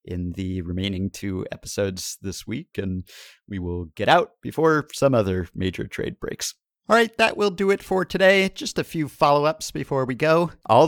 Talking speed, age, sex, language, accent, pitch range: 180 wpm, 50-69, male, English, American, 95-140 Hz